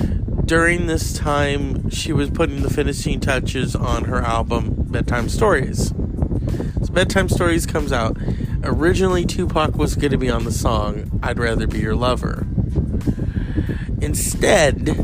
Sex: male